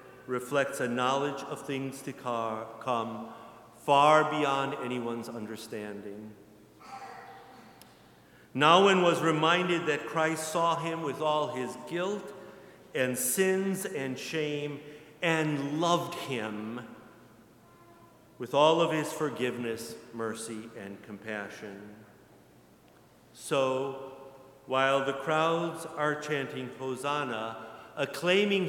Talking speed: 95 wpm